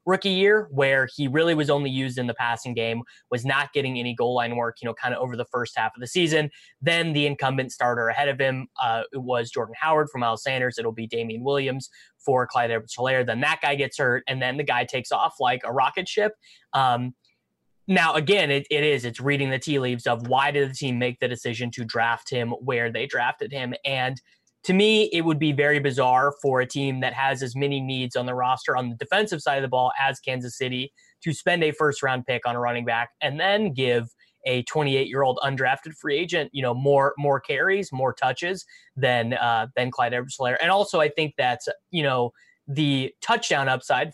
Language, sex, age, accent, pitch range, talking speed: English, male, 20-39, American, 125-150 Hz, 220 wpm